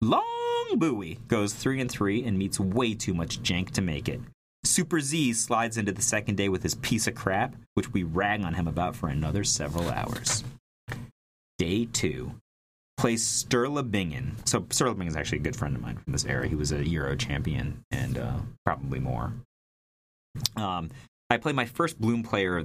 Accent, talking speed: American, 185 wpm